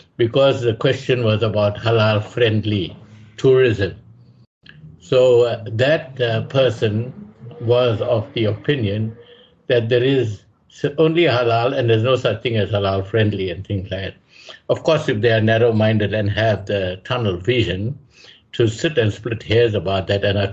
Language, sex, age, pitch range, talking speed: English, male, 60-79, 105-130 Hz, 150 wpm